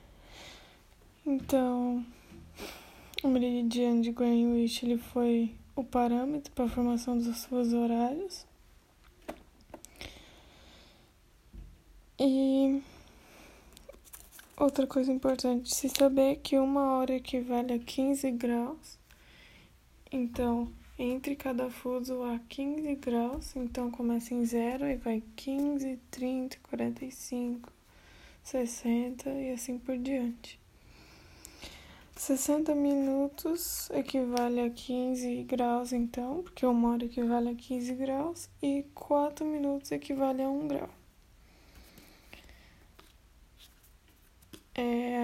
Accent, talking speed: Brazilian, 95 wpm